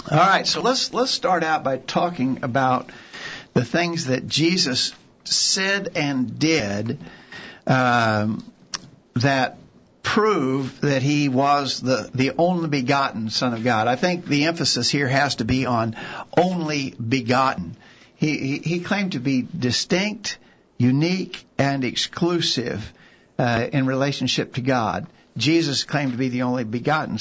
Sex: male